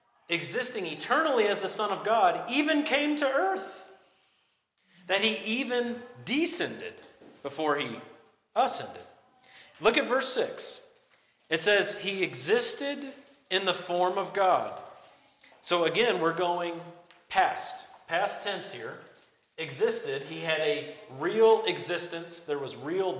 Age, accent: 40-59, American